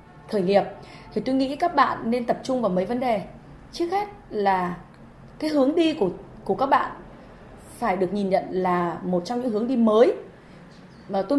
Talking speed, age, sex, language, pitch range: 195 wpm, 20-39, female, Vietnamese, 185-260 Hz